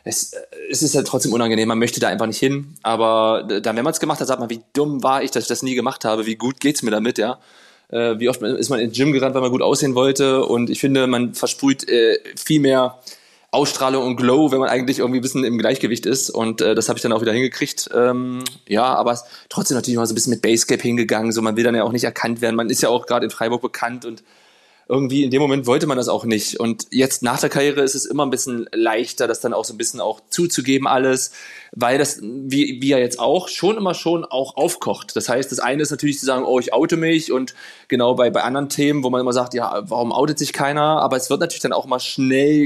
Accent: German